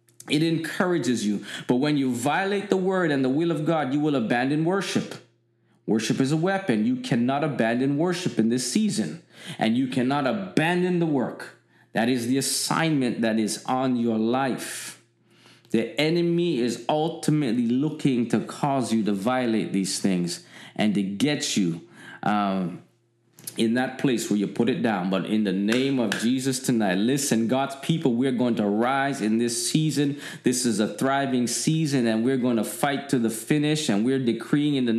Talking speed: 180 wpm